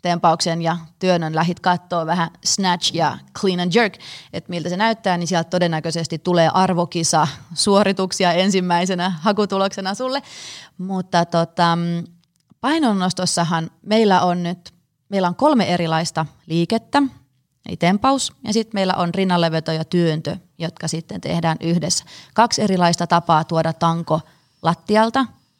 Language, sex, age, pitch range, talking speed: Finnish, female, 30-49, 165-195 Hz, 125 wpm